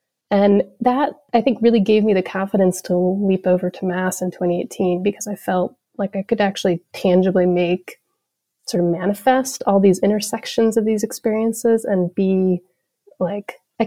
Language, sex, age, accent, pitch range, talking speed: English, female, 30-49, American, 180-215 Hz, 165 wpm